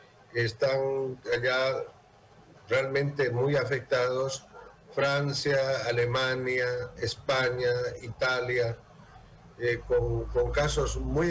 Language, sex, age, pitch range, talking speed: Spanish, male, 50-69, 120-145 Hz, 75 wpm